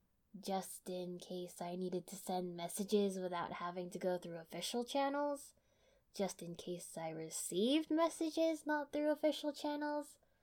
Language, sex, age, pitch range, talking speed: English, female, 10-29, 180-230 Hz, 145 wpm